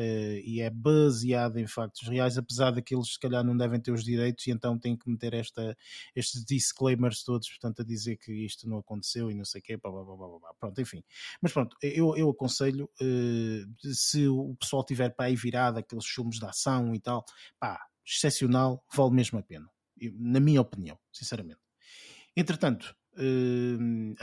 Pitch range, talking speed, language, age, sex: 115-140 Hz, 190 wpm, Portuguese, 20-39, male